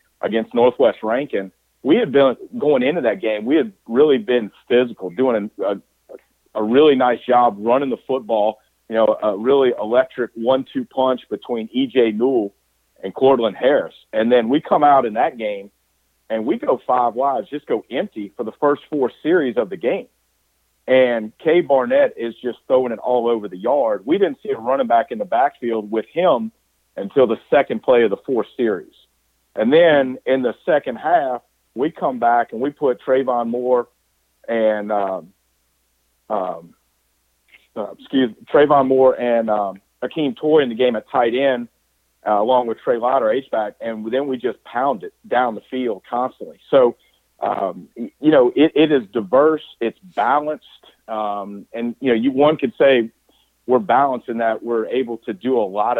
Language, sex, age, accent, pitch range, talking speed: English, male, 50-69, American, 110-135 Hz, 180 wpm